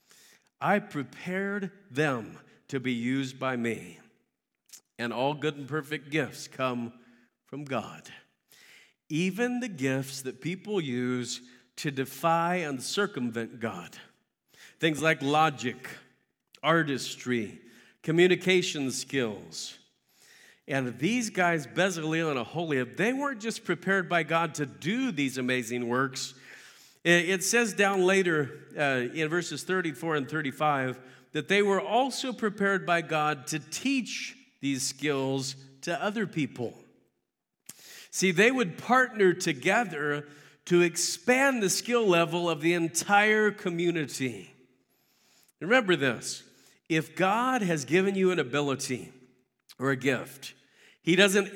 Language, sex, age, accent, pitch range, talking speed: English, male, 50-69, American, 135-190 Hz, 120 wpm